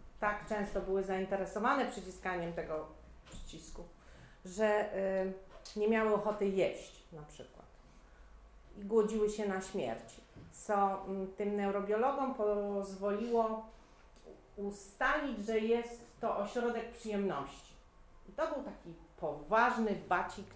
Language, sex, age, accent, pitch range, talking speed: Polish, female, 40-59, native, 165-225 Hz, 100 wpm